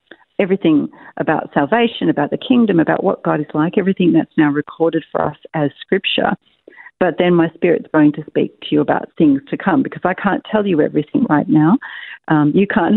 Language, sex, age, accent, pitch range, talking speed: English, female, 50-69, Australian, 155-200 Hz, 200 wpm